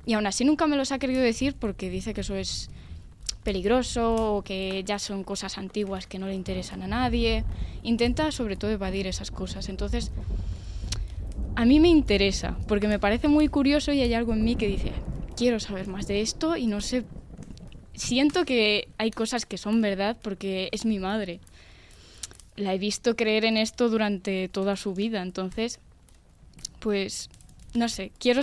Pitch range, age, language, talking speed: 195-230 Hz, 10-29, Spanish, 175 wpm